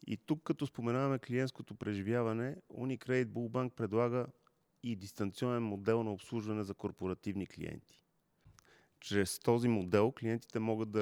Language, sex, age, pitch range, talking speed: Bulgarian, male, 30-49, 100-120 Hz, 125 wpm